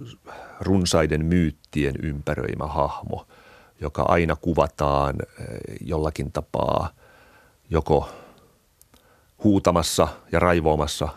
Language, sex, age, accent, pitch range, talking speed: Finnish, male, 40-59, native, 75-85 Hz, 70 wpm